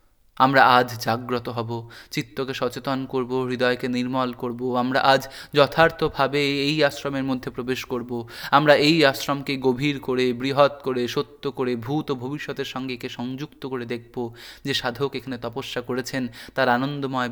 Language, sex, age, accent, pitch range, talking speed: Hindi, male, 20-39, native, 120-135 Hz, 125 wpm